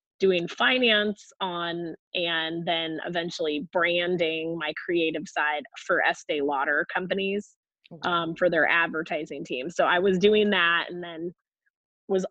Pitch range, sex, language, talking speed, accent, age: 165-195 Hz, female, English, 130 wpm, American, 20-39